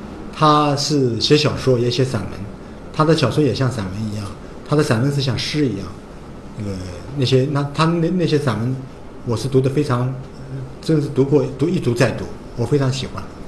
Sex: male